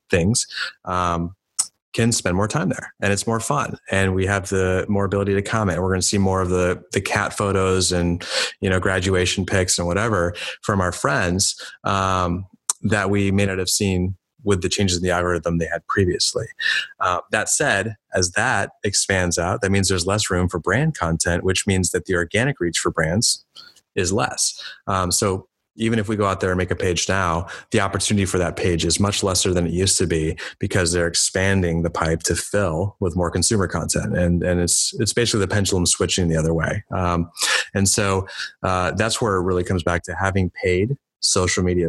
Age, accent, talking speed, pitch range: 30-49, American, 205 wpm, 90-100 Hz